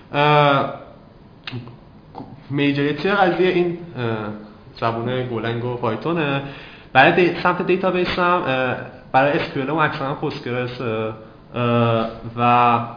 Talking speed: 90 wpm